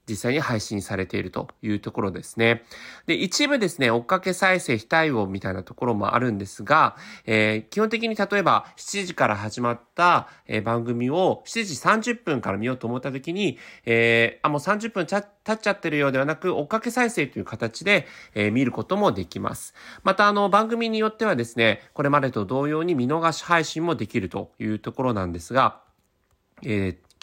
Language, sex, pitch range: Japanese, male, 115-175 Hz